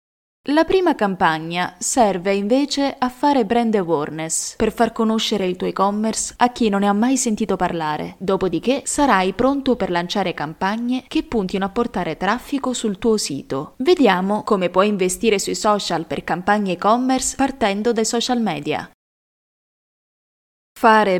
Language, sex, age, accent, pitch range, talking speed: Italian, female, 20-39, native, 185-240 Hz, 145 wpm